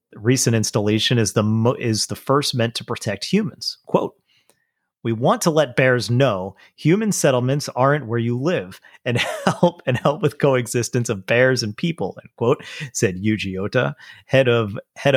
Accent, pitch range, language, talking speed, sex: American, 105-130 Hz, English, 170 wpm, male